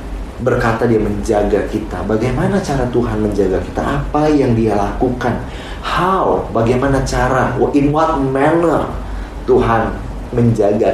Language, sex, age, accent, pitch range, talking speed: Indonesian, male, 30-49, native, 100-130 Hz, 115 wpm